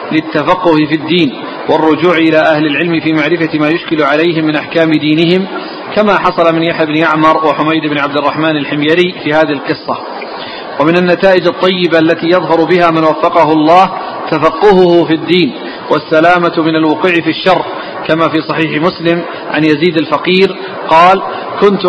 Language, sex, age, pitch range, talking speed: Arabic, male, 40-59, 160-180 Hz, 150 wpm